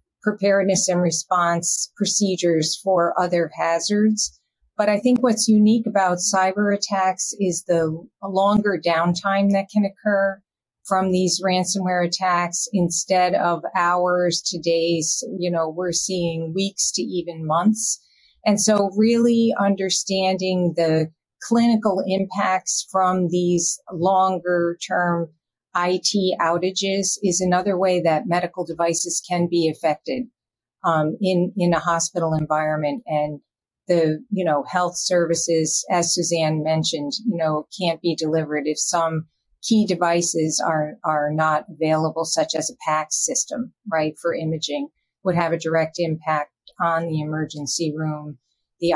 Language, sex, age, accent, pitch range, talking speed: English, female, 40-59, American, 160-195 Hz, 130 wpm